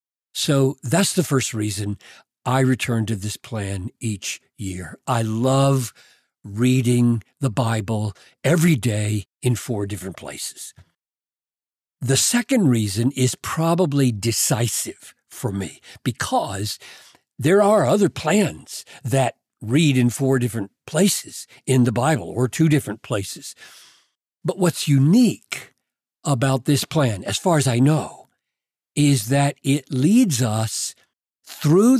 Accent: American